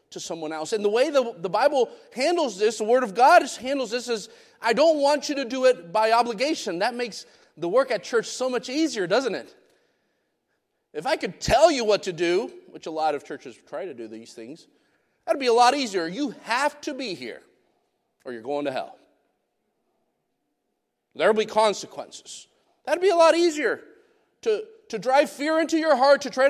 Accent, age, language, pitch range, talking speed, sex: American, 40-59, English, 225-325 Hz, 205 wpm, male